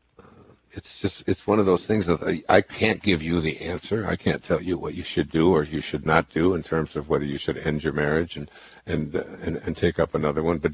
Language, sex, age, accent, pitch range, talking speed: English, male, 60-79, American, 80-100 Hz, 265 wpm